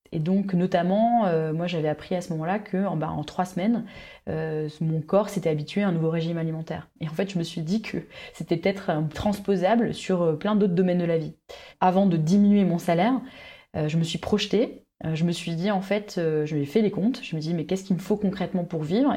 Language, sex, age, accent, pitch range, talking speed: French, female, 20-39, French, 165-205 Hz, 245 wpm